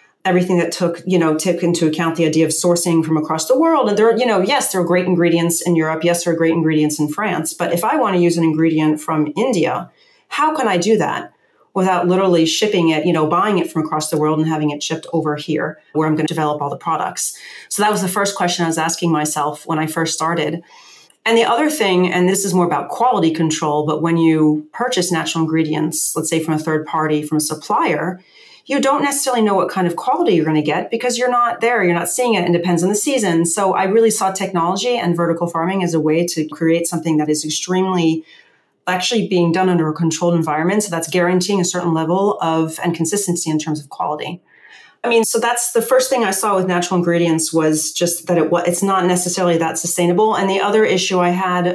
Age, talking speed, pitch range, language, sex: 40-59, 240 wpm, 160-185 Hz, English, female